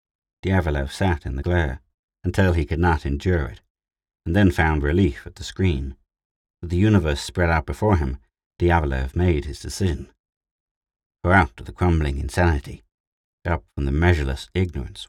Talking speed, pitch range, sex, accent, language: 160 wpm, 75-95 Hz, male, British, English